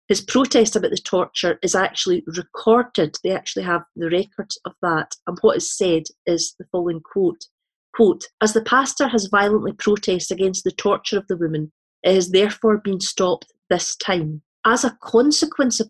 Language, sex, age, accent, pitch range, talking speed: English, female, 40-59, British, 175-215 Hz, 175 wpm